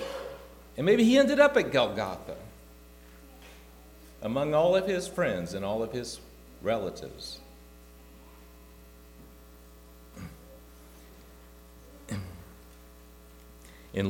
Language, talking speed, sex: English, 75 wpm, male